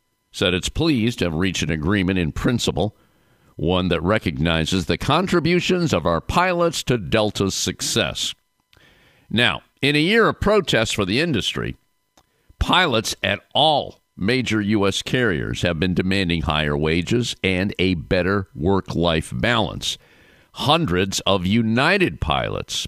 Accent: American